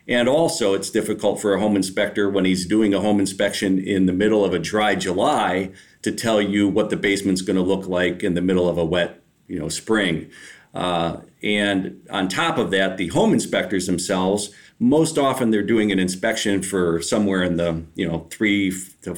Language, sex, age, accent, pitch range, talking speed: English, male, 40-59, American, 90-105 Hz, 200 wpm